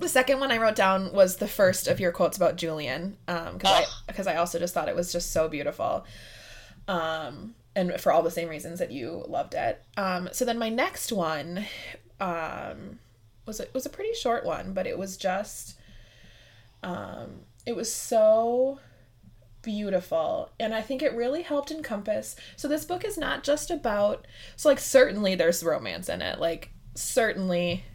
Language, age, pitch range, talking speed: English, 20-39, 160-240 Hz, 175 wpm